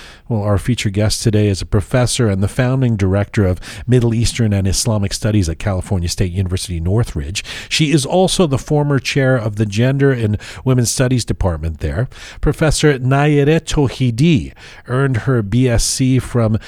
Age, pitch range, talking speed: 40-59, 100-130 Hz, 160 wpm